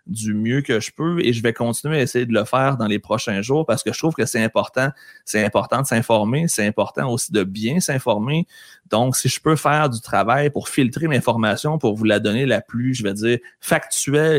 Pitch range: 110-135 Hz